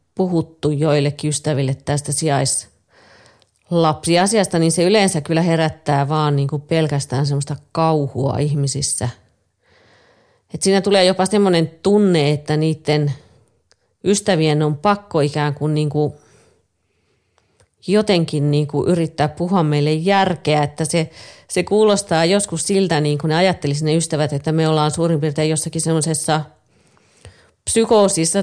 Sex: female